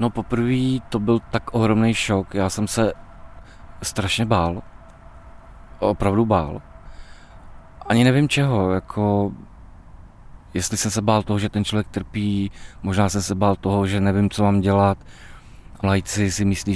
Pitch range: 90-100 Hz